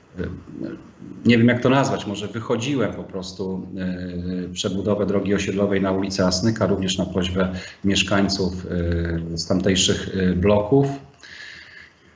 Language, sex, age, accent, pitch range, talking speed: Polish, male, 30-49, native, 95-110 Hz, 110 wpm